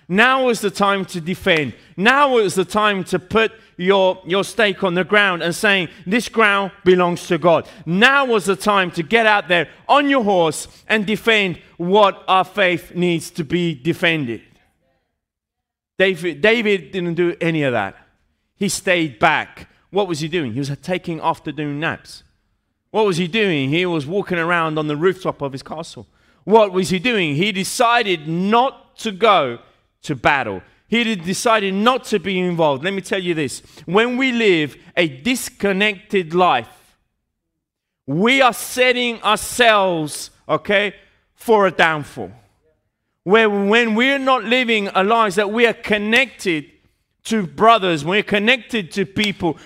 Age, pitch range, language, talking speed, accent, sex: 30-49, 175-220 Hz, Italian, 160 wpm, British, male